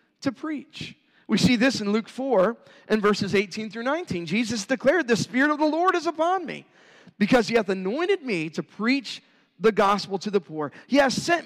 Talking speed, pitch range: 200 wpm, 185-265 Hz